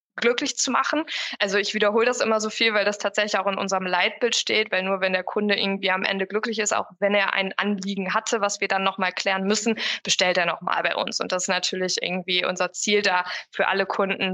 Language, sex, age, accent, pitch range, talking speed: German, female, 20-39, German, 190-215 Hz, 235 wpm